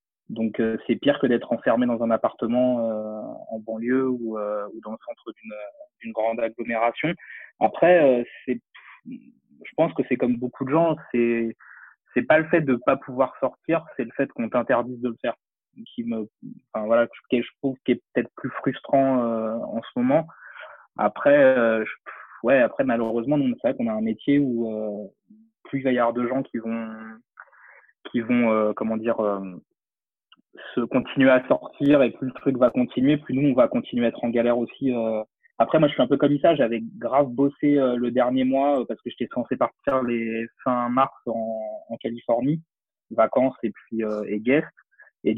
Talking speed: 195 wpm